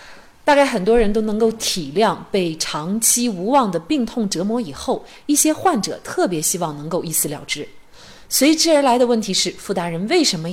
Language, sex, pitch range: Chinese, female, 170-235 Hz